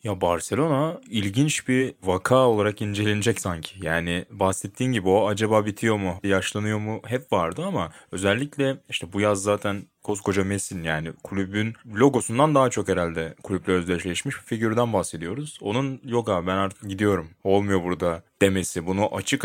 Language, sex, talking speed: Turkish, male, 150 wpm